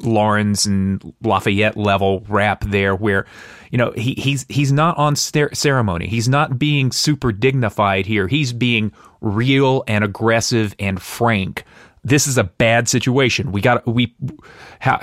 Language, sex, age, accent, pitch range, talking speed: English, male, 30-49, American, 105-125 Hz, 150 wpm